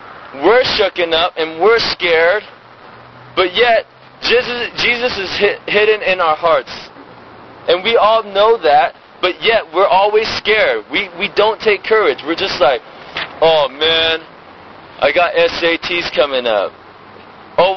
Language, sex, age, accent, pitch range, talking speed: English, male, 20-39, American, 170-210 Hz, 140 wpm